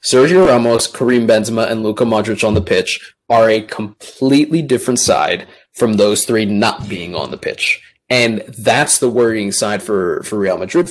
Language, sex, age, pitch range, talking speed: English, male, 20-39, 110-140 Hz, 175 wpm